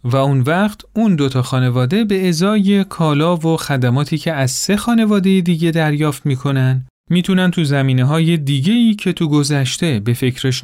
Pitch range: 125-175 Hz